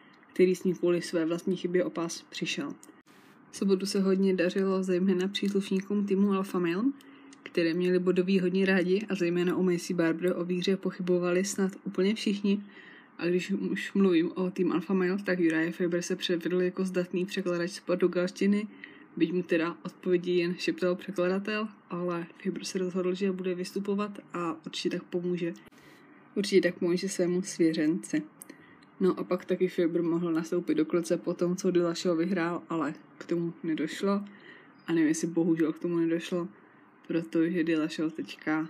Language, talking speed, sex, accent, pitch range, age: Czech, 165 wpm, female, native, 170-195 Hz, 20-39